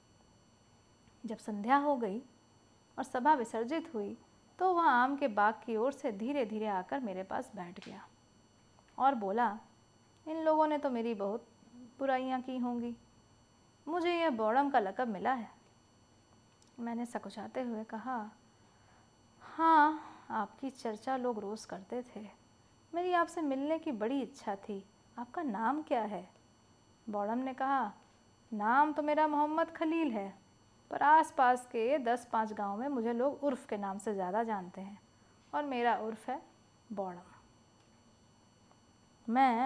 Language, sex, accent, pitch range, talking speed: Hindi, female, native, 195-275 Hz, 140 wpm